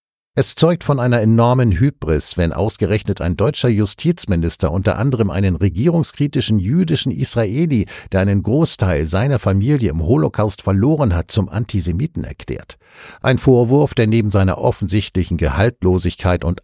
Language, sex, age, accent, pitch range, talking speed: German, male, 60-79, German, 90-115 Hz, 135 wpm